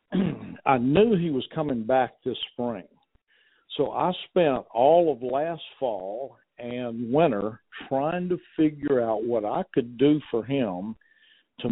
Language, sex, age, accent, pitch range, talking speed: English, male, 50-69, American, 120-150 Hz, 145 wpm